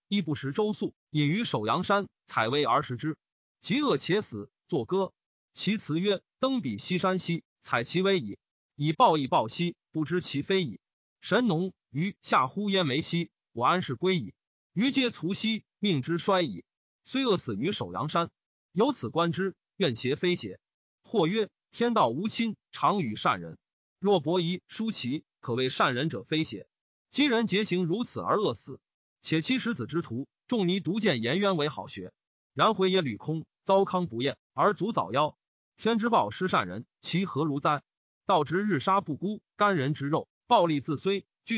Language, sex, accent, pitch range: Chinese, male, native, 150-205 Hz